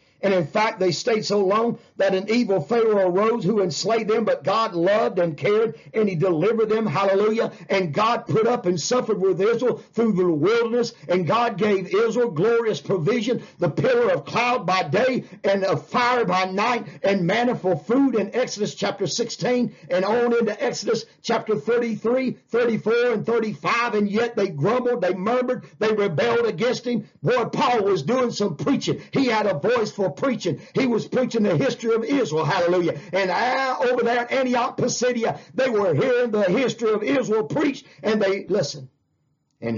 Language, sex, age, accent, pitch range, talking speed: English, male, 50-69, American, 170-230 Hz, 180 wpm